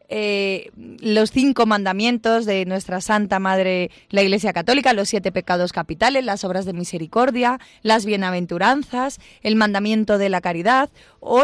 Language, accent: Spanish, Spanish